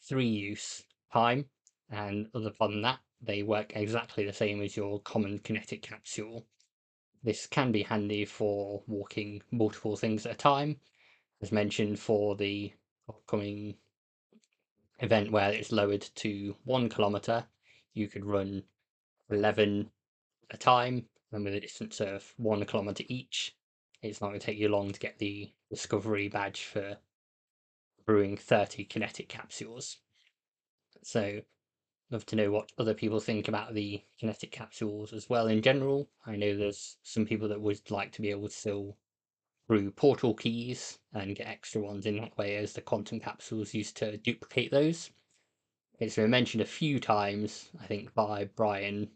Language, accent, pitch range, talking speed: English, British, 100-115 Hz, 155 wpm